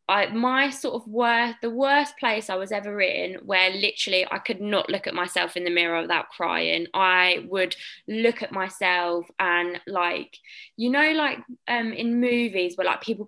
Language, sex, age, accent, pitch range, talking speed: English, female, 20-39, British, 185-225 Hz, 185 wpm